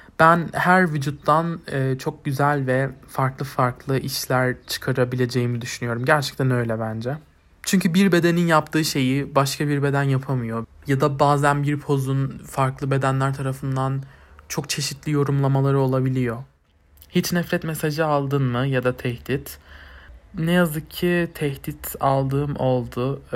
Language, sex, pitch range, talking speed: Turkish, male, 125-150 Hz, 125 wpm